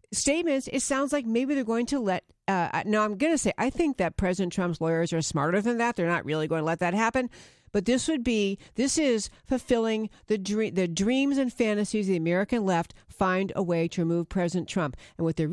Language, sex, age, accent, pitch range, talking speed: English, female, 50-69, American, 175-235 Hz, 230 wpm